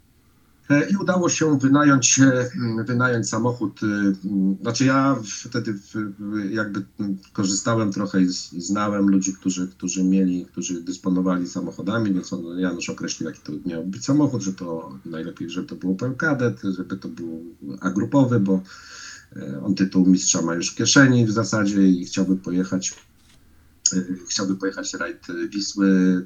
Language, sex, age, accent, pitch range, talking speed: Polish, male, 50-69, native, 95-115 Hz, 130 wpm